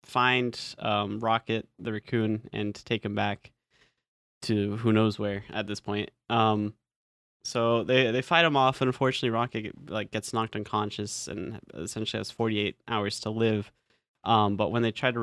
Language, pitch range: English, 105-120 Hz